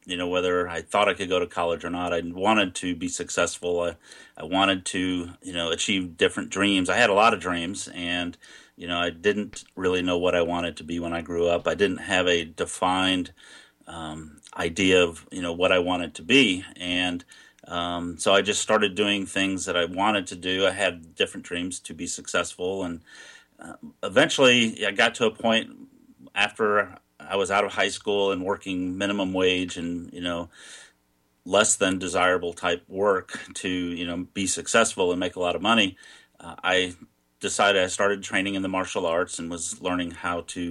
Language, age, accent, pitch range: English, 40-59, American, 85-95 Hz